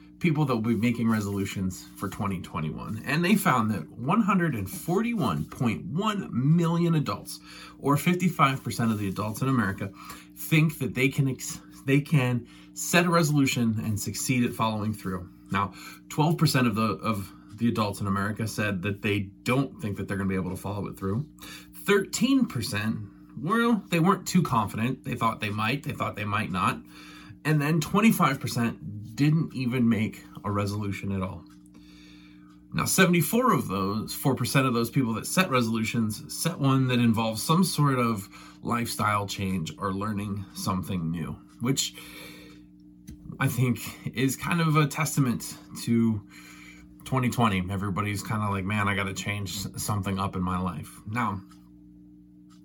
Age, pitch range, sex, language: 30-49, 95-135 Hz, male, English